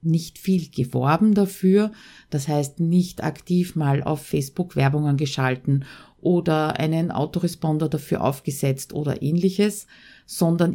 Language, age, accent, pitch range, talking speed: German, 50-69, Austrian, 145-190 Hz, 115 wpm